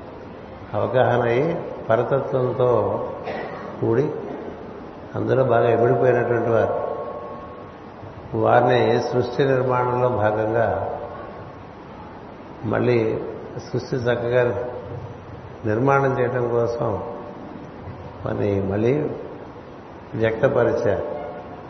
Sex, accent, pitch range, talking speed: male, native, 110-125 Hz, 60 wpm